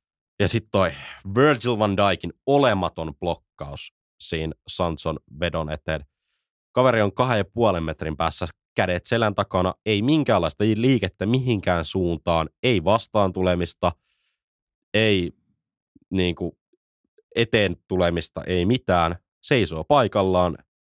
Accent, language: native, Finnish